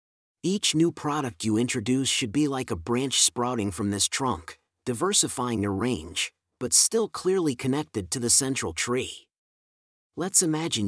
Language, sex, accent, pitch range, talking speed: English, male, American, 110-150 Hz, 150 wpm